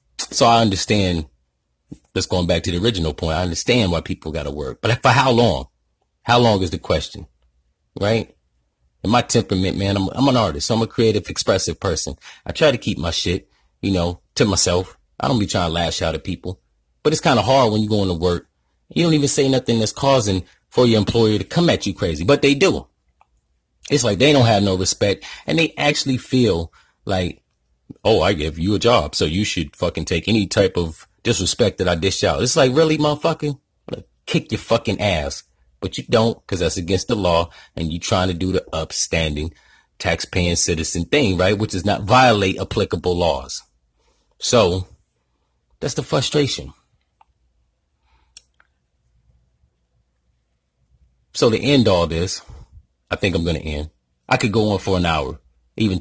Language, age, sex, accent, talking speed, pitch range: English, 30-49, male, American, 185 wpm, 75-110 Hz